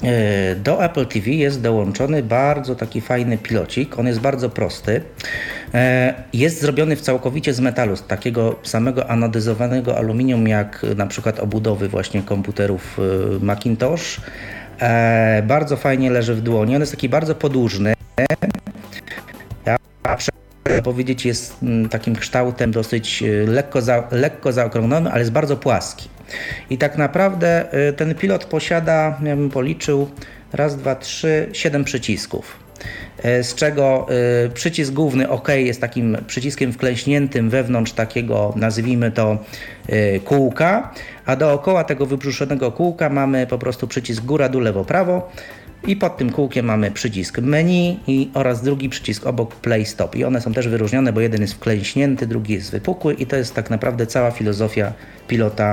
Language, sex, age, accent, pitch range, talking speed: Polish, male, 40-59, native, 110-140 Hz, 140 wpm